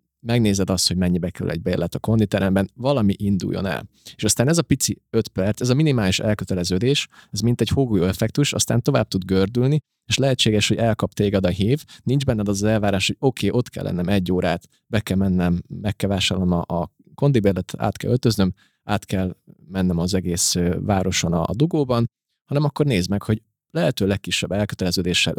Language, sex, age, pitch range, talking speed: Hungarian, male, 30-49, 95-120 Hz, 180 wpm